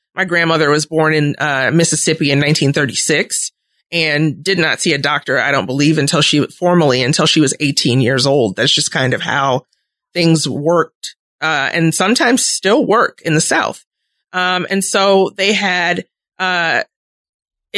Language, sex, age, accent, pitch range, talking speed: English, female, 30-49, American, 155-185 Hz, 165 wpm